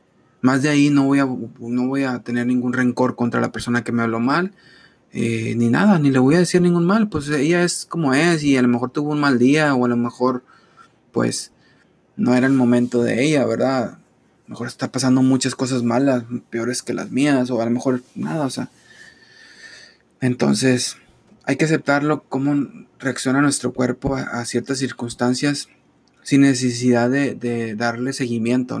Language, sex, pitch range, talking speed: Spanish, male, 125-150 Hz, 190 wpm